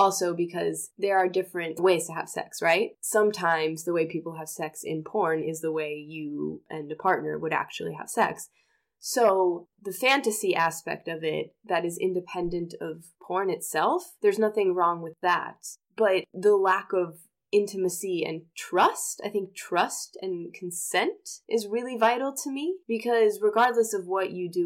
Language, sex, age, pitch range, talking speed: English, female, 20-39, 170-225 Hz, 170 wpm